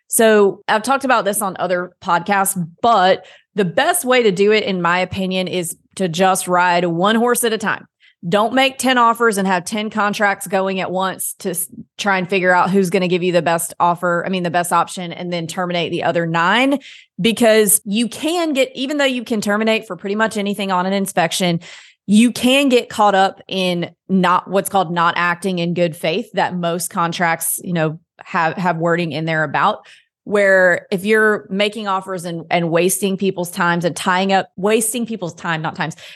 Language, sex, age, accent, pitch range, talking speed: English, female, 30-49, American, 175-215 Hz, 200 wpm